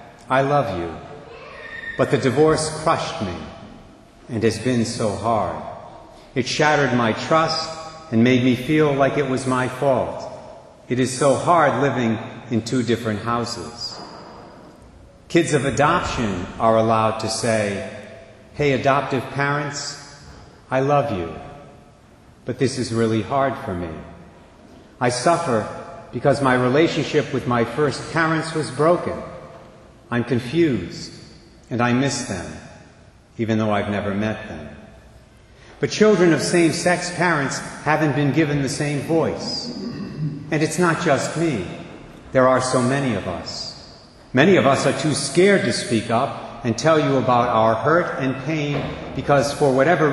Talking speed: 145 wpm